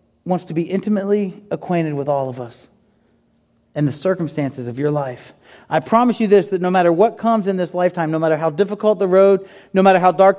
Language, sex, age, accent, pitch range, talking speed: English, male, 40-59, American, 150-195 Hz, 215 wpm